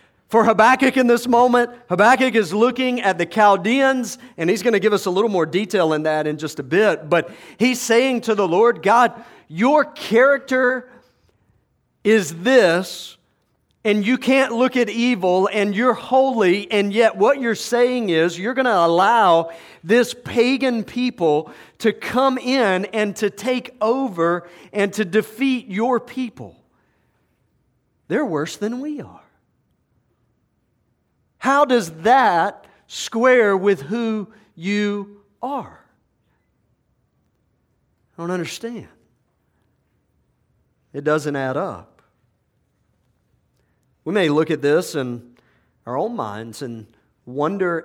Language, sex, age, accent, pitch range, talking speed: English, male, 40-59, American, 165-240 Hz, 130 wpm